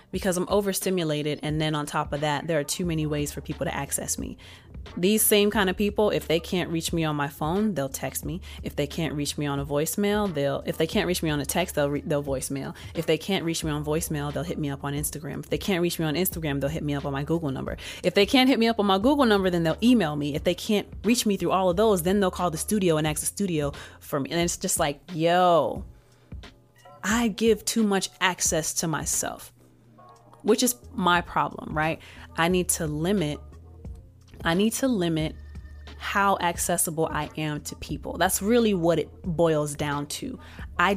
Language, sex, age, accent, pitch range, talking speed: English, female, 30-49, American, 150-195 Hz, 230 wpm